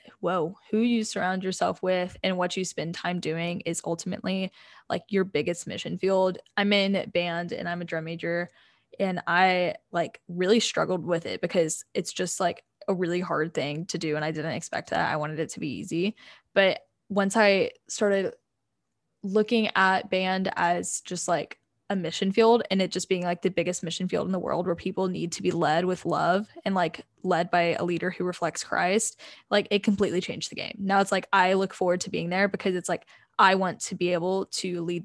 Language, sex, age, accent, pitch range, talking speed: English, female, 10-29, American, 175-195 Hz, 210 wpm